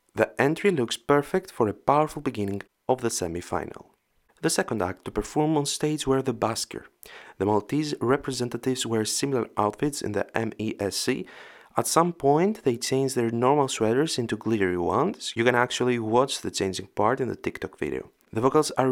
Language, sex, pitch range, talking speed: English, male, 115-145 Hz, 175 wpm